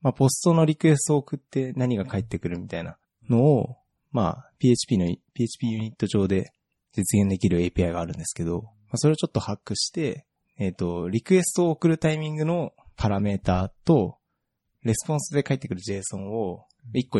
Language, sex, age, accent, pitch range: Japanese, male, 20-39, native, 95-130 Hz